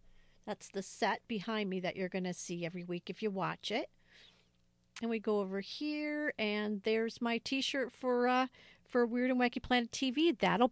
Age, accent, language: 50-69, American, English